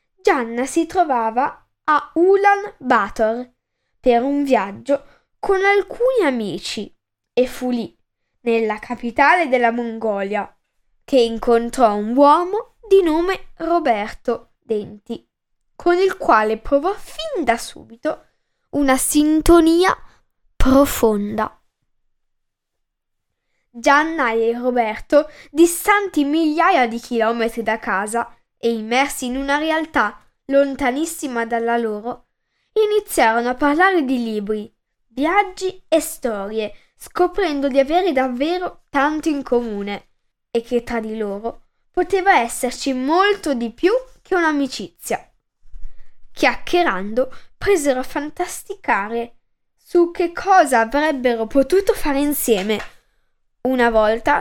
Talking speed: 105 wpm